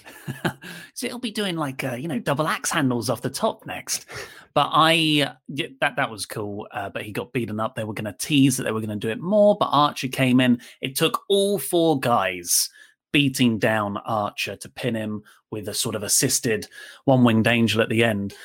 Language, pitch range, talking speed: English, 115-165 Hz, 215 wpm